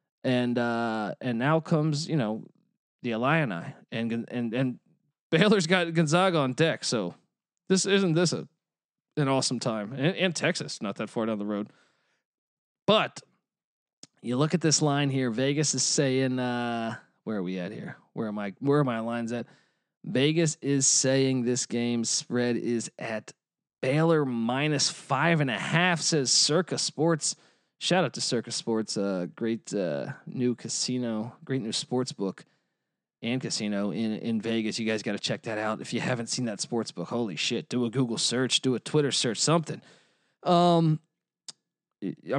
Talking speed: 175 wpm